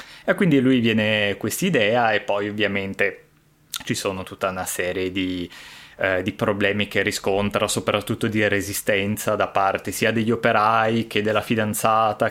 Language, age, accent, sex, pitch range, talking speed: Italian, 20-39, native, male, 100-120 Hz, 145 wpm